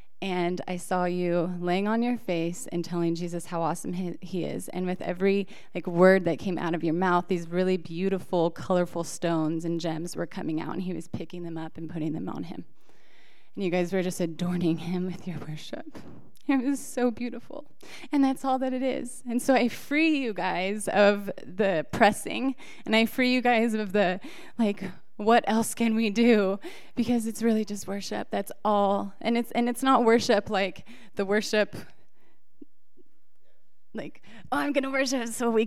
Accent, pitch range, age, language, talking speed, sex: American, 180-235 Hz, 20-39, English, 190 wpm, female